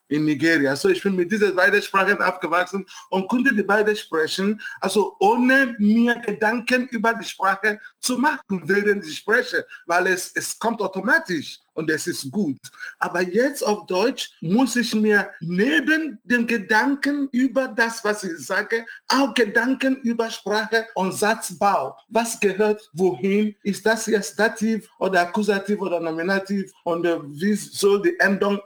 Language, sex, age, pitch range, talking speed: German, male, 50-69, 180-225 Hz, 155 wpm